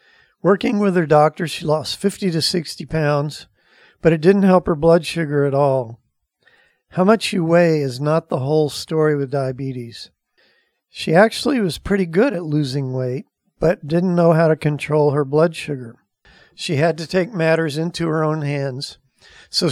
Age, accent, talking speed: 50-69, American, 175 wpm